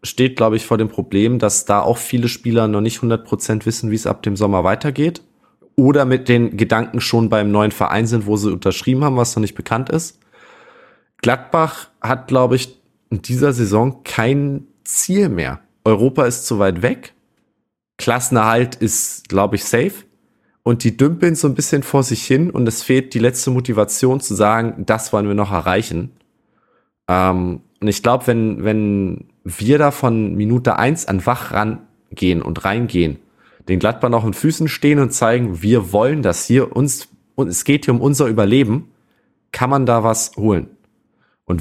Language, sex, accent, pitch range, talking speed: German, male, German, 105-130 Hz, 175 wpm